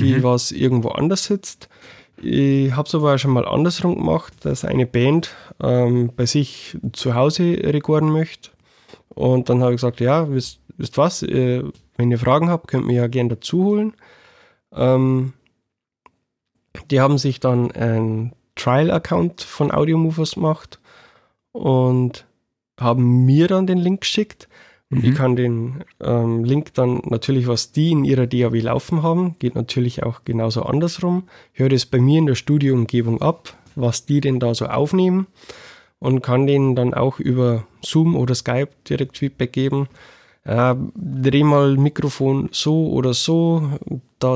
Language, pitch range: German, 120-150 Hz